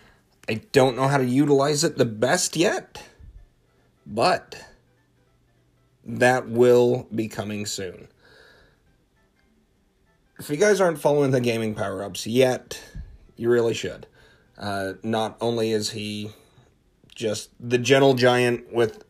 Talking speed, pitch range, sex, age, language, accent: 120 wpm, 105-130 Hz, male, 30-49, English, American